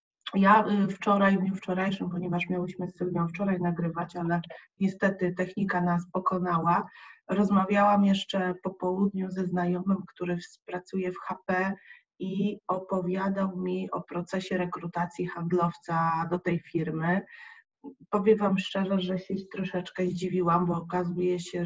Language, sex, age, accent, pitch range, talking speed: Polish, female, 20-39, native, 175-195 Hz, 125 wpm